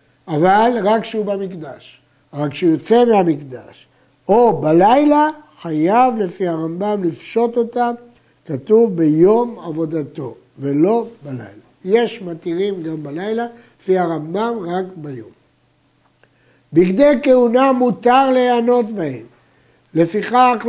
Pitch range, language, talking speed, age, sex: 160-235 Hz, Hebrew, 100 wpm, 60-79, male